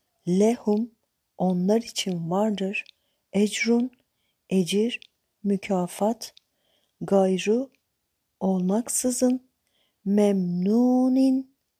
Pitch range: 190-225 Hz